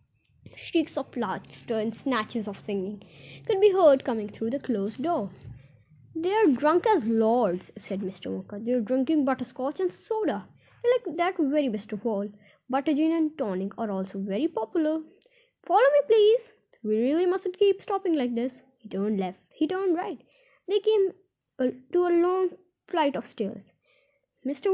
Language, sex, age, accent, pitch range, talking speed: Hindi, female, 20-39, native, 215-340 Hz, 170 wpm